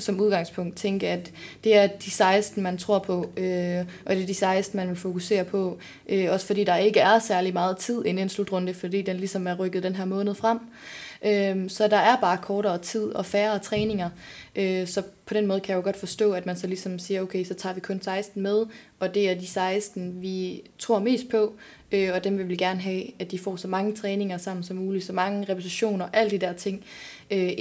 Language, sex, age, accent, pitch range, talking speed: Danish, female, 20-39, native, 180-210 Hz, 235 wpm